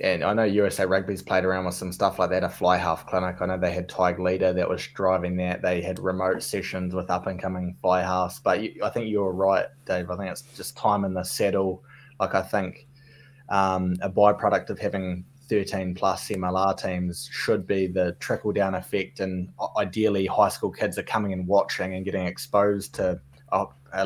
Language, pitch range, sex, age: English, 90-100 Hz, male, 20-39